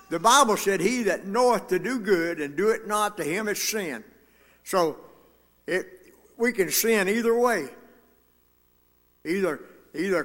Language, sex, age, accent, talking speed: English, male, 60-79, American, 150 wpm